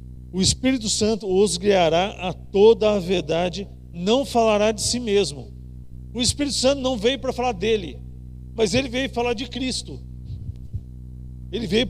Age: 50-69